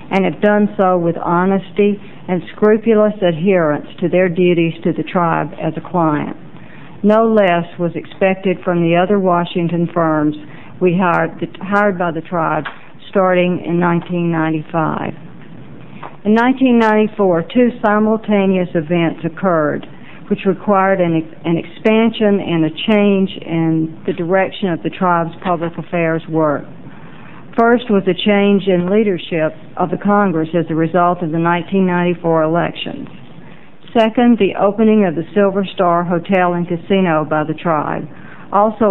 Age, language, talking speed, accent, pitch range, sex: 60-79, English, 135 wpm, American, 165-200 Hz, female